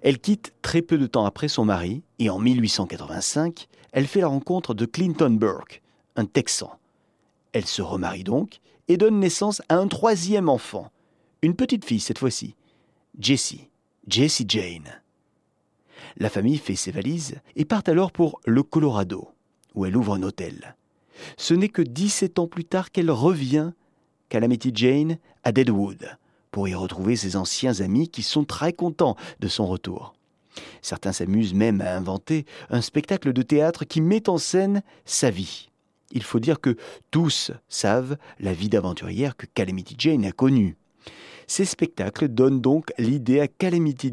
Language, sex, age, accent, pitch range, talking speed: French, male, 40-59, French, 115-170 Hz, 160 wpm